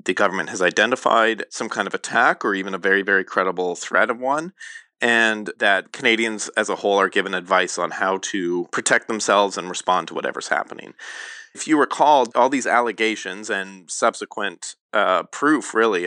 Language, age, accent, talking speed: English, 30-49, American, 175 wpm